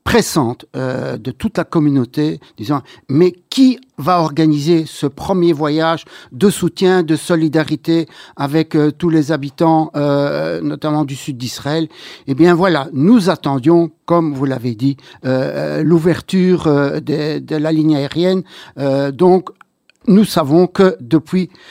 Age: 60-79